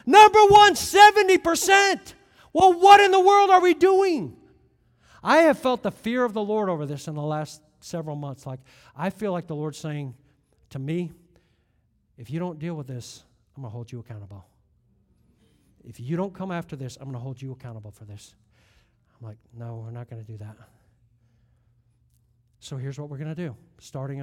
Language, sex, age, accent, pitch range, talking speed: English, male, 50-69, American, 130-195 Hz, 195 wpm